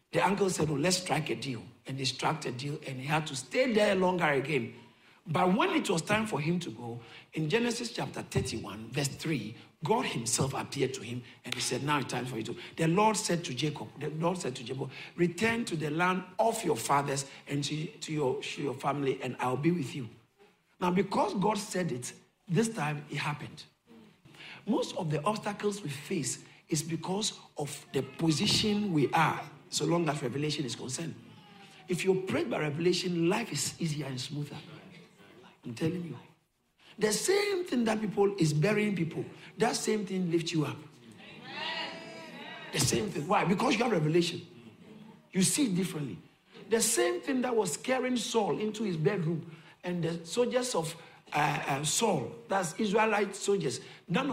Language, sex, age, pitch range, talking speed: English, male, 50-69, 145-200 Hz, 185 wpm